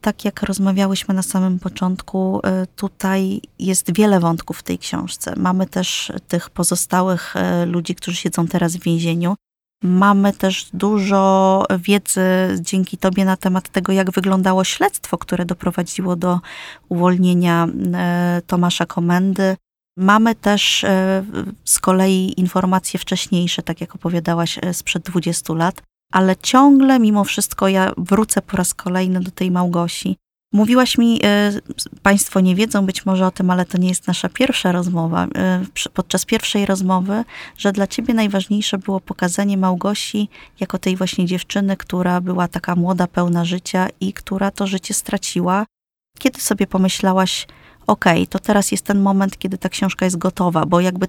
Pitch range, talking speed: 180-200 Hz, 145 wpm